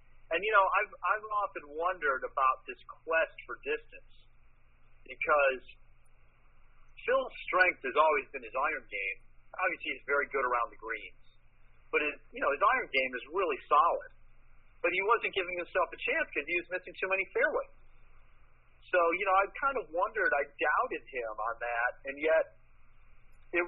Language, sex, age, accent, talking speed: English, male, 40-59, American, 170 wpm